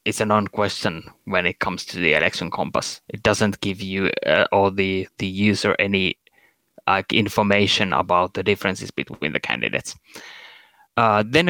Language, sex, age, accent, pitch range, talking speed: Finnish, male, 20-39, native, 105-130 Hz, 155 wpm